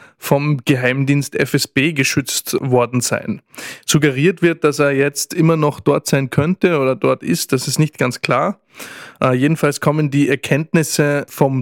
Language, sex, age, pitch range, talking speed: German, male, 20-39, 130-145 Hz, 155 wpm